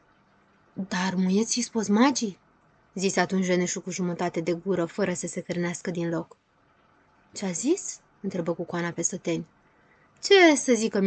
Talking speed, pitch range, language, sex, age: 140 wpm, 175-215 Hz, Romanian, female, 20-39